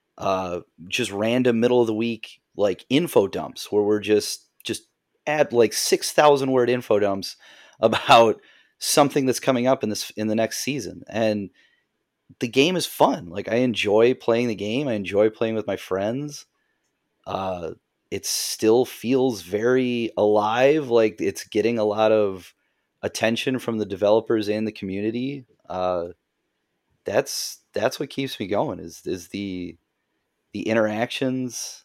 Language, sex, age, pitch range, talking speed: English, male, 30-49, 100-125 Hz, 150 wpm